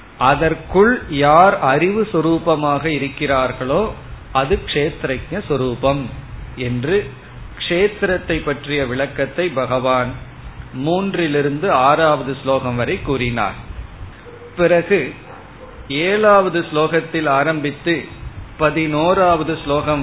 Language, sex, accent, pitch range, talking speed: Tamil, male, native, 135-170 Hz, 70 wpm